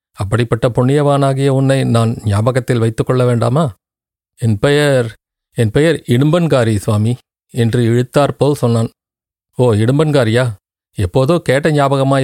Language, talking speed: Tamil, 110 wpm